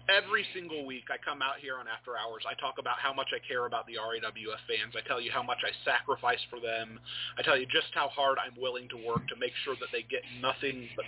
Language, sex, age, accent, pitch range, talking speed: English, male, 30-49, American, 125-195 Hz, 260 wpm